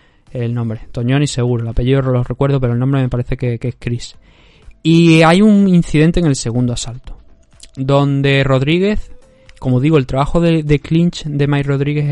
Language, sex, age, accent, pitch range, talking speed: Spanish, male, 20-39, Spanish, 125-150 Hz, 190 wpm